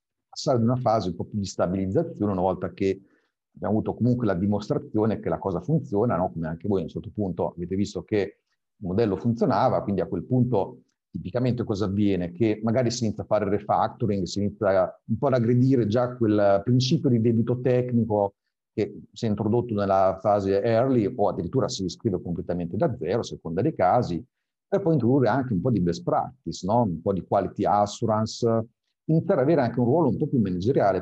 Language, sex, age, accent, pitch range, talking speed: Italian, male, 50-69, native, 100-125 Hz, 195 wpm